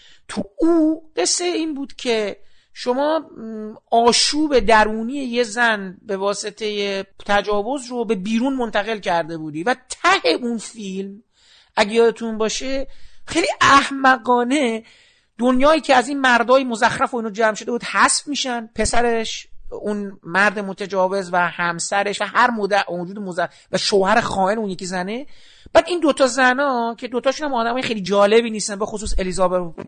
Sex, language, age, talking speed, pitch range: male, Persian, 50-69, 145 wpm, 205-275 Hz